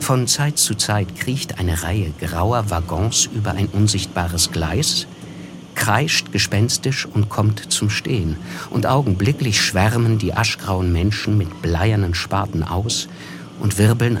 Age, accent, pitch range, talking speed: 50-69, German, 95-120 Hz, 130 wpm